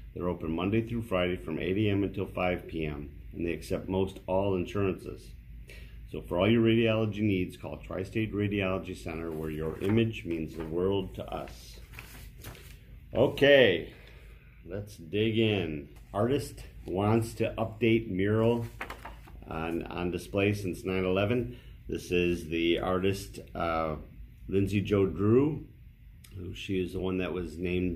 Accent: American